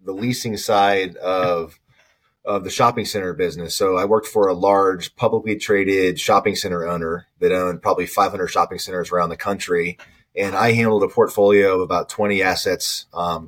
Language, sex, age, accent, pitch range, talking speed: English, male, 30-49, American, 95-115 Hz, 175 wpm